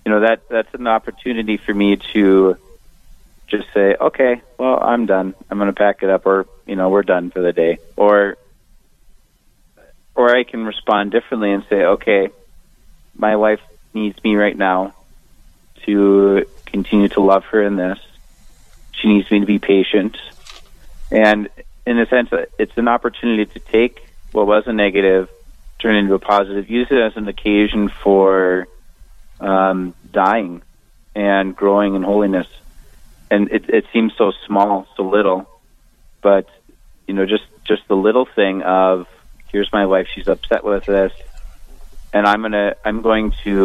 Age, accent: 30-49, American